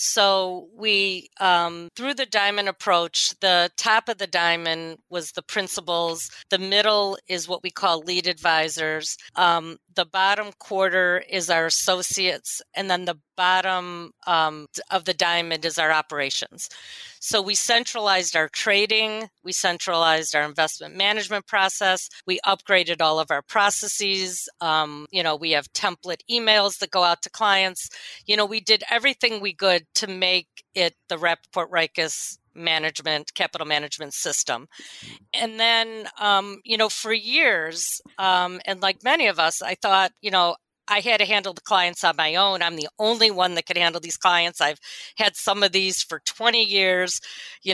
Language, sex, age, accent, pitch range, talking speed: English, female, 40-59, American, 170-205 Hz, 165 wpm